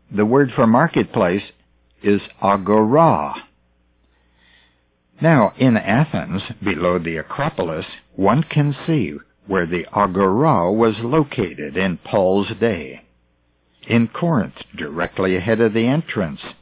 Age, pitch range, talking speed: 60-79, 80-110 Hz, 110 wpm